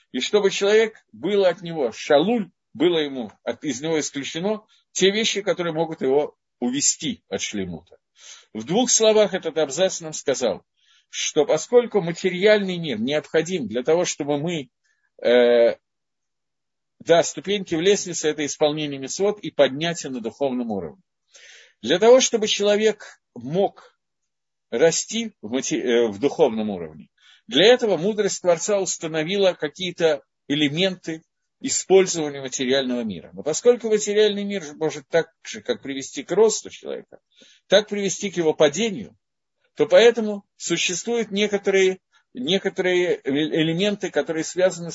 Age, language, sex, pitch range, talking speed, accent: 50-69, Russian, male, 155-205 Hz, 125 wpm, native